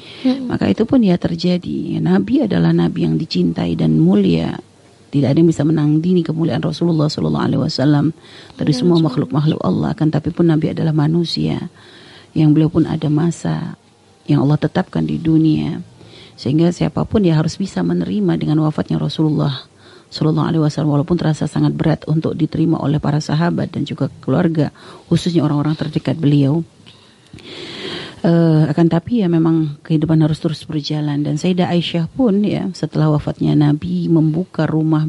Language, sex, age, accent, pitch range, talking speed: Indonesian, female, 40-59, native, 150-170 Hz, 155 wpm